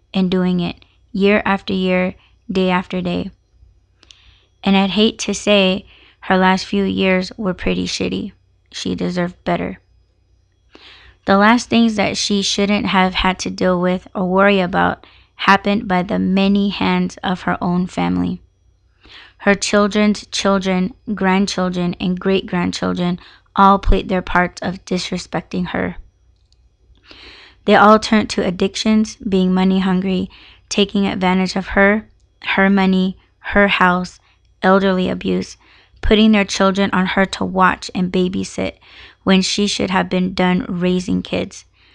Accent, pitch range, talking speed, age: American, 175-200 Hz, 135 wpm, 20-39